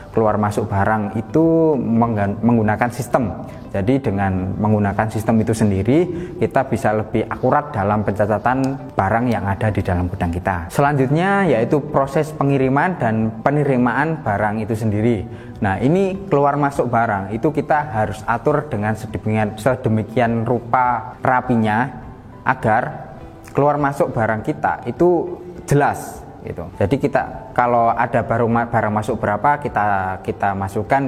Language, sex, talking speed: Indonesian, male, 130 wpm